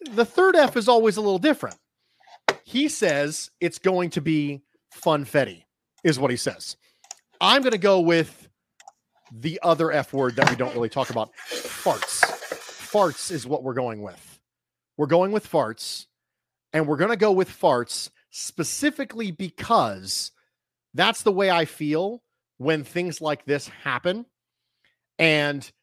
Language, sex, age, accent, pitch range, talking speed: English, male, 40-59, American, 140-190 Hz, 155 wpm